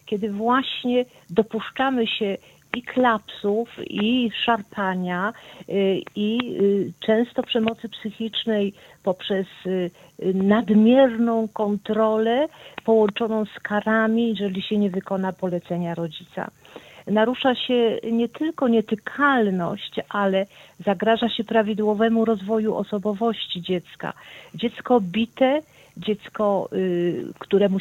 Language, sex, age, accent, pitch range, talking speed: Polish, female, 50-69, native, 195-240 Hz, 90 wpm